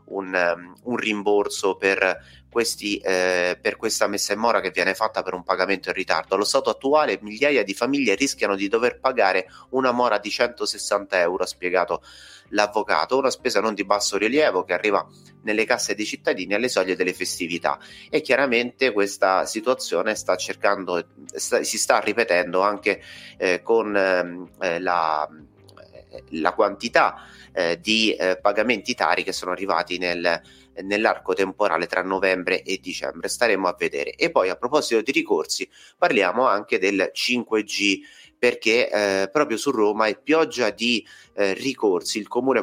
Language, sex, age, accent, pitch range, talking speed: Italian, male, 30-49, native, 95-120 Hz, 155 wpm